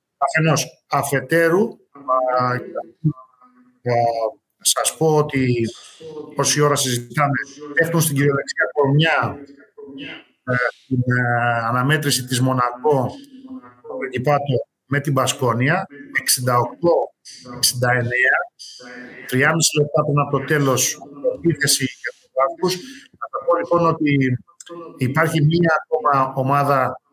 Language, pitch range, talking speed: Greek, 130-165 Hz, 95 wpm